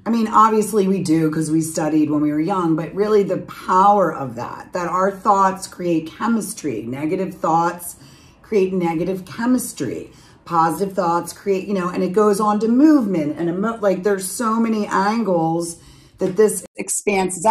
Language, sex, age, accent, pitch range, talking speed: English, female, 40-59, American, 170-230 Hz, 165 wpm